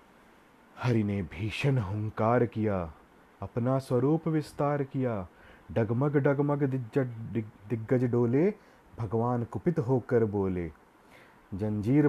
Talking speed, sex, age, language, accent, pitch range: 95 wpm, male, 30-49, Hindi, native, 105-140 Hz